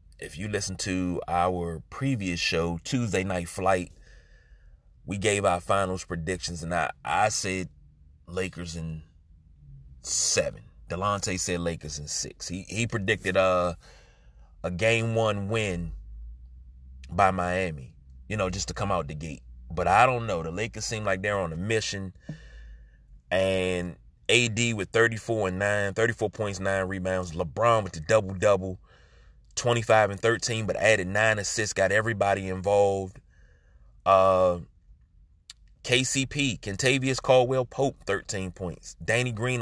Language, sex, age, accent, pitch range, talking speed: English, male, 30-49, American, 85-115 Hz, 135 wpm